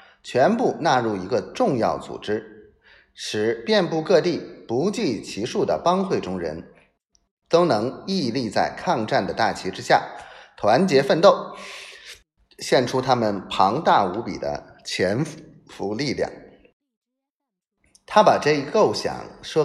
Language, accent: Chinese, native